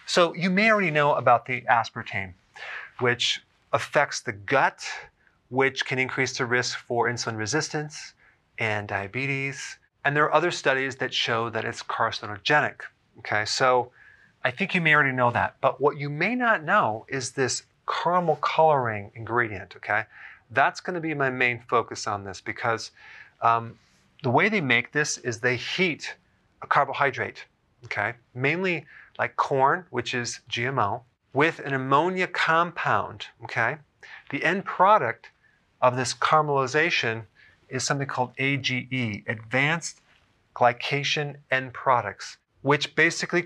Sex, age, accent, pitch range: male, 30-49, American, 115-150 Hz